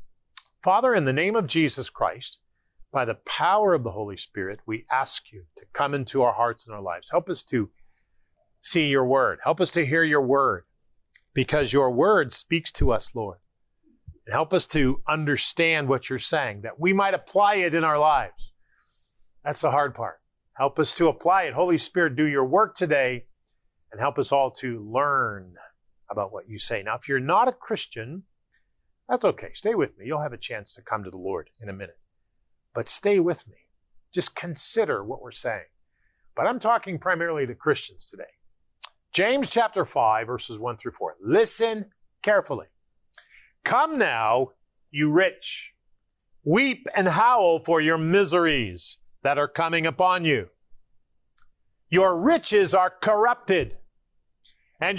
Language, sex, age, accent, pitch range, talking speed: English, male, 40-59, American, 125-185 Hz, 165 wpm